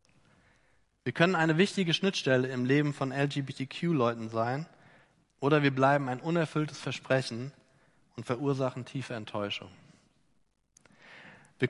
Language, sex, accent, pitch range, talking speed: German, male, German, 135-175 Hz, 110 wpm